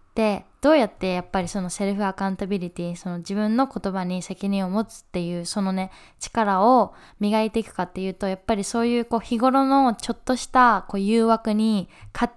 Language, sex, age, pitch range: Japanese, female, 10-29, 190-235 Hz